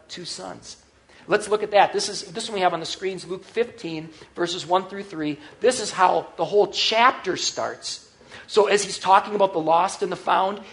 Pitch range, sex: 175-215 Hz, male